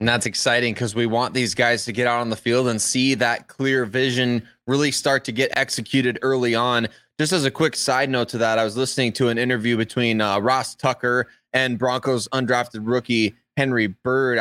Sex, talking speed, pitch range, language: male, 210 wpm, 115-130 Hz, English